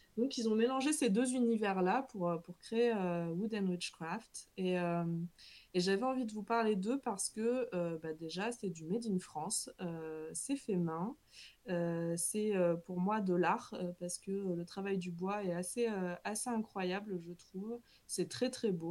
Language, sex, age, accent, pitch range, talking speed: French, female, 20-39, French, 175-215 Hz, 185 wpm